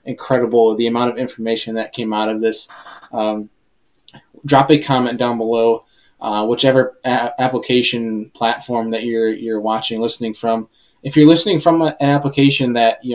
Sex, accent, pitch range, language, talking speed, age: male, American, 115-135 Hz, English, 155 wpm, 10-29